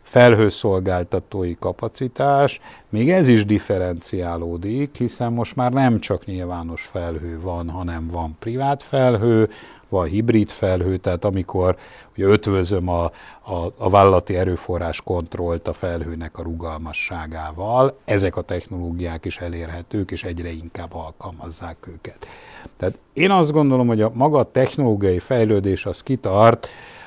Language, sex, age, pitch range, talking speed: Hungarian, male, 60-79, 85-110 Hz, 125 wpm